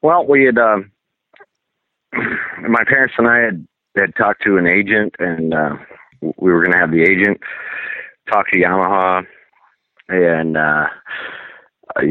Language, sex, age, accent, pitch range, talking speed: English, male, 40-59, American, 85-95 Hz, 140 wpm